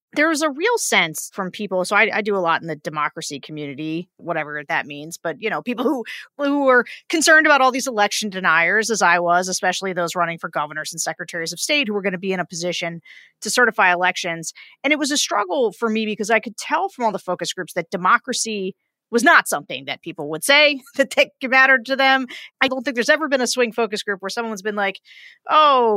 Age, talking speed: 40-59, 235 wpm